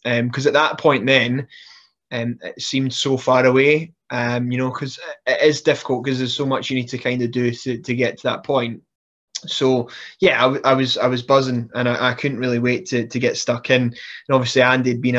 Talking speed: 235 wpm